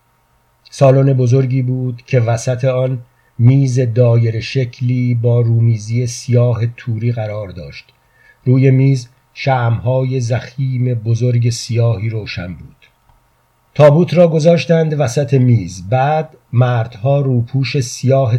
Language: Persian